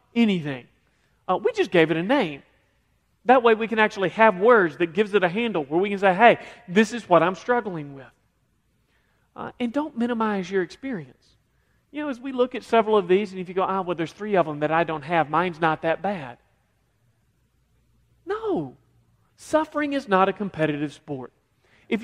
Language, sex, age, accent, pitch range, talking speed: English, male, 40-59, American, 155-245 Hz, 195 wpm